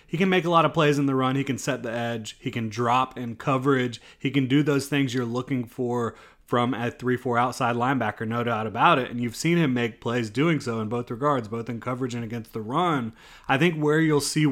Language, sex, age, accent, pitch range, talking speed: English, male, 30-49, American, 115-135 Hz, 250 wpm